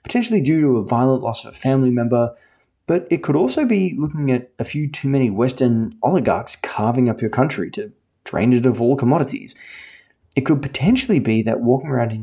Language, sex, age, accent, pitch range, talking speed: English, male, 20-39, Australian, 110-155 Hz, 200 wpm